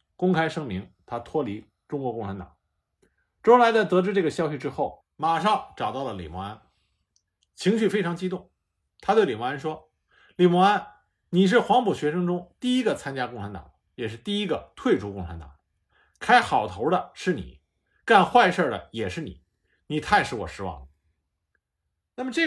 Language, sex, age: Chinese, male, 50-69